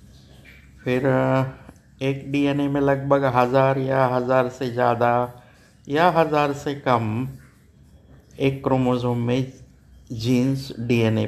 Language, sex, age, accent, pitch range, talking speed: Hindi, male, 60-79, native, 110-140 Hz, 100 wpm